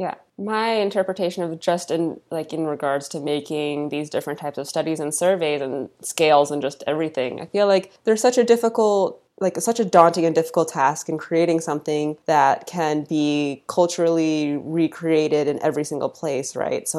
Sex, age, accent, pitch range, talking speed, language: female, 20-39, American, 145-170 Hz, 180 wpm, English